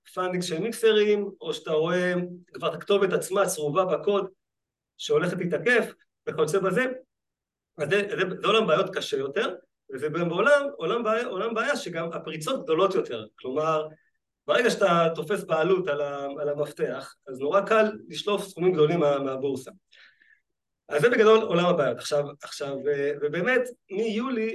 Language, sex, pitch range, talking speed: Hebrew, male, 160-220 Hz, 130 wpm